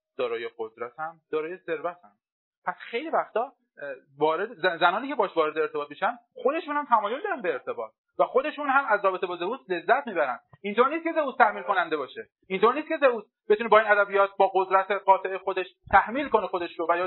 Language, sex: Persian, male